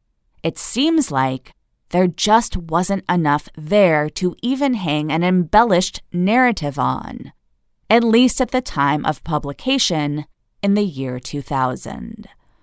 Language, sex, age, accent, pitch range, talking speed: English, female, 30-49, American, 135-205 Hz, 125 wpm